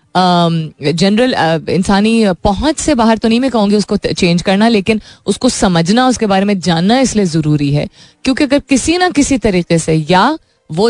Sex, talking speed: female, 170 wpm